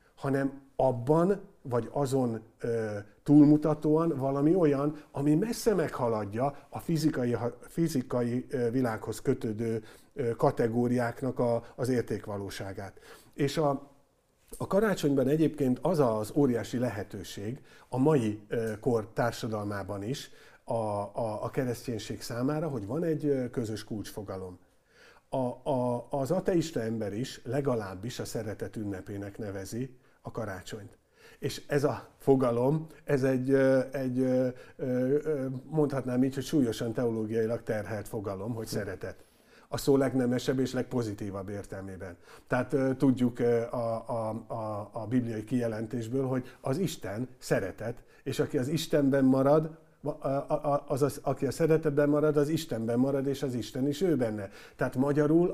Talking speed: 115 wpm